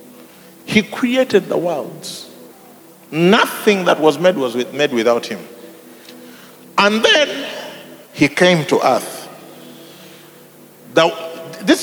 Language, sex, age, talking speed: English, male, 50-69, 95 wpm